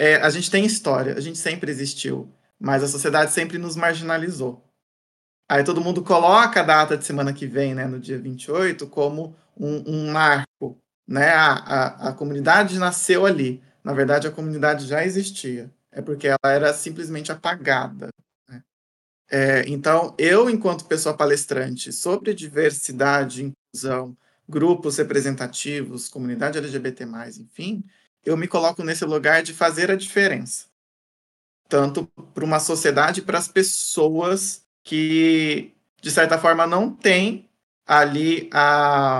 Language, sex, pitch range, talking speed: Portuguese, male, 135-170 Hz, 140 wpm